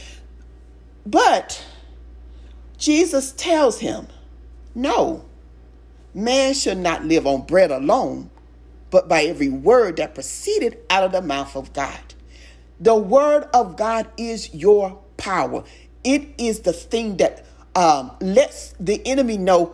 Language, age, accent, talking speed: English, 40-59, American, 125 wpm